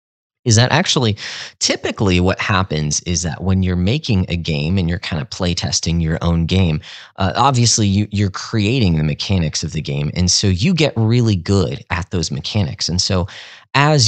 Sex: male